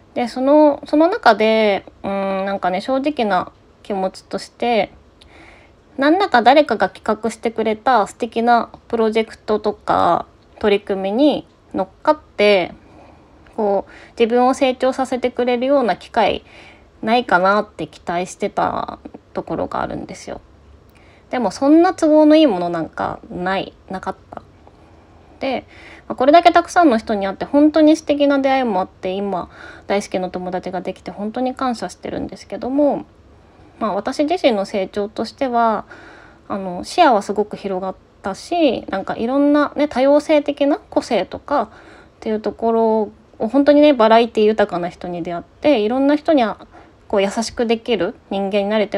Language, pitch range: Japanese, 195-275 Hz